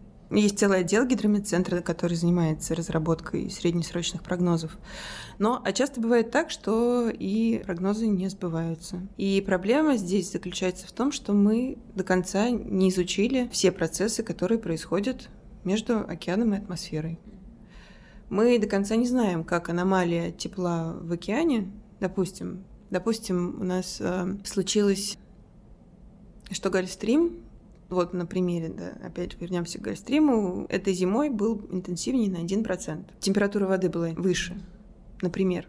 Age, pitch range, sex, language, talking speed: 20-39, 180-210 Hz, female, Russian, 125 wpm